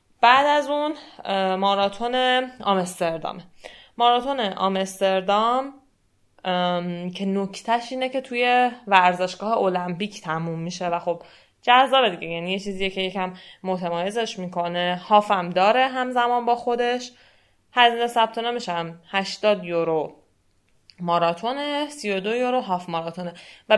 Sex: female